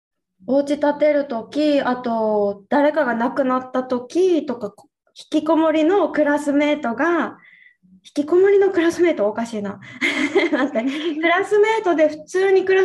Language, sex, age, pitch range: Japanese, female, 20-39, 230-320 Hz